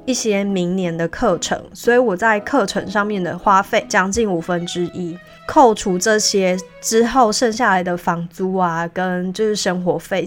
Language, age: Chinese, 20-39